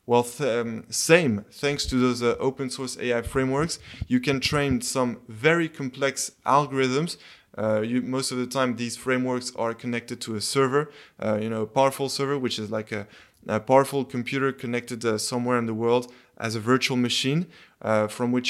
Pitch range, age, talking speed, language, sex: 115-135 Hz, 20-39, 180 wpm, English, male